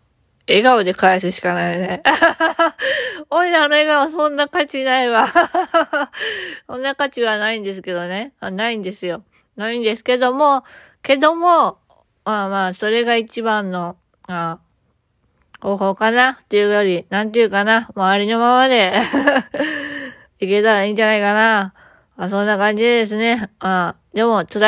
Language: Japanese